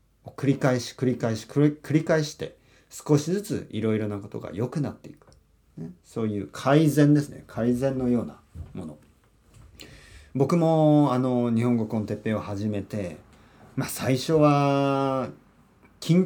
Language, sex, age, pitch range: Japanese, male, 40-59, 105-145 Hz